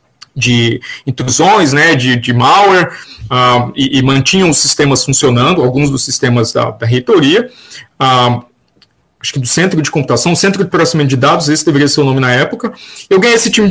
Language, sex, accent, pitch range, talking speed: Portuguese, male, Brazilian, 130-170 Hz, 175 wpm